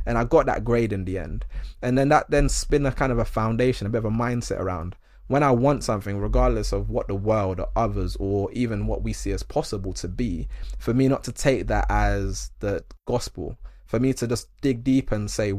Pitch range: 100-120 Hz